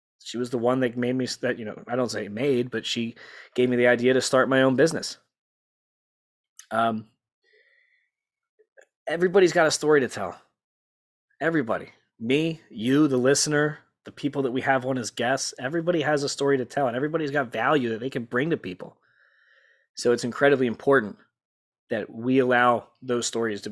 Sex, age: male, 20-39